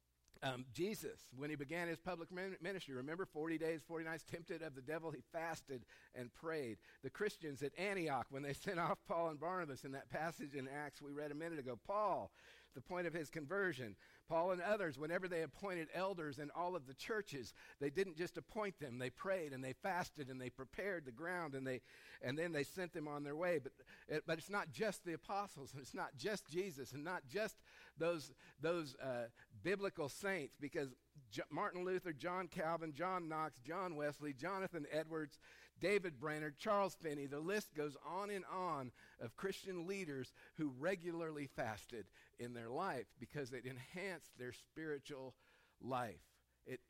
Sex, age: male, 50-69